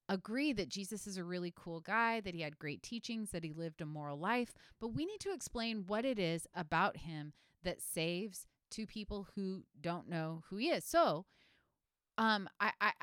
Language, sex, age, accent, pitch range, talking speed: English, female, 30-49, American, 160-230 Hz, 200 wpm